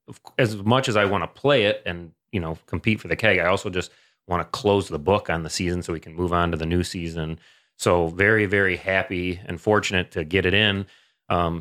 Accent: American